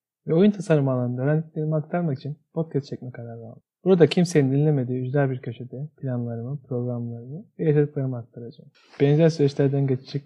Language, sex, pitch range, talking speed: Turkish, male, 130-165 Hz, 140 wpm